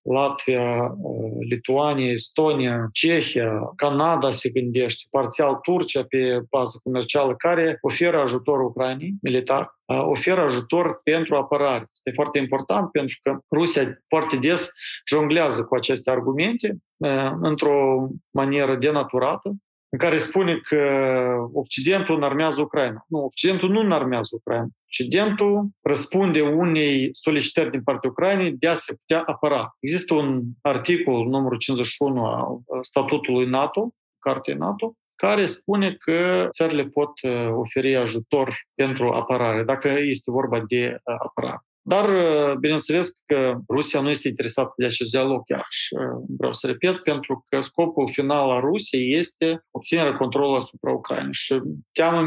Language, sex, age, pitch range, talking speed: Romanian, male, 40-59, 130-165 Hz, 130 wpm